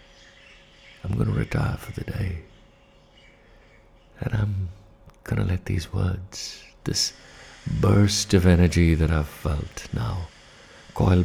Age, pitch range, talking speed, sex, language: 60-79, 90-110 Hz, 115 wpm, male, English